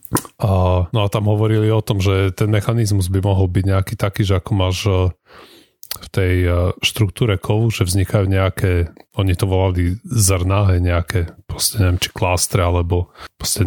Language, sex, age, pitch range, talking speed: Slovak, male, 30-49, 90-110 Hz, 160 wpm